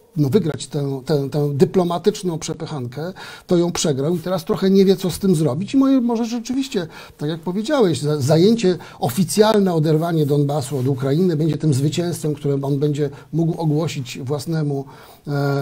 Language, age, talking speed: Polish, 50-69, 160 wpm